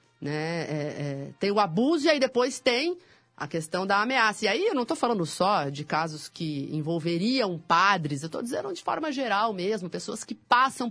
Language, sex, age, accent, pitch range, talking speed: Portuguese, female, 30-49, Brazilian, 160-225 Hz, 185 wpm